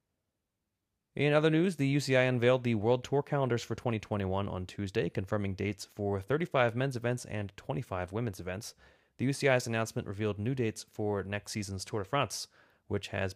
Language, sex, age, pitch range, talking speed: English, male, 30-49, 95-130 Hz, 170 wpm